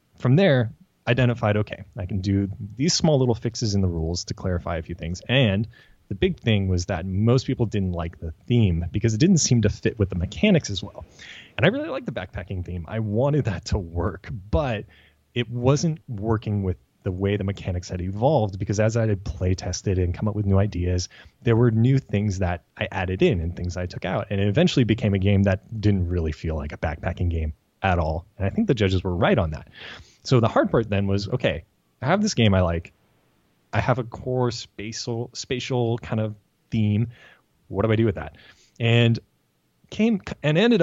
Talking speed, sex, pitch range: 215 wpm, male, 95-120 Hz